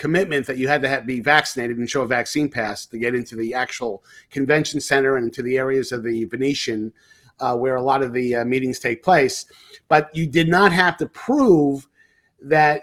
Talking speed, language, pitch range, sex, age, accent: 210 wpm, English, 120-150 Hz, male, 40-59, American